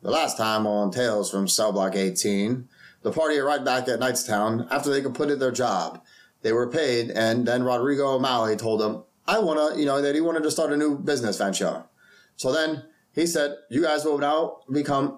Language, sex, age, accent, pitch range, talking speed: English, male, 30-49, American, 125-165 Hz, 205 wpm